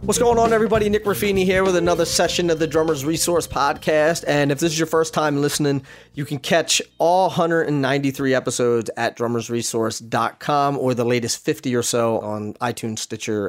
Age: 30-49